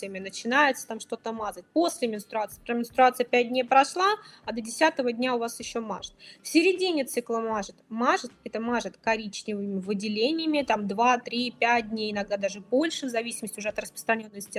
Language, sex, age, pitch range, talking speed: Russian, female, 20-39, 220-275 Hz, 155 wpm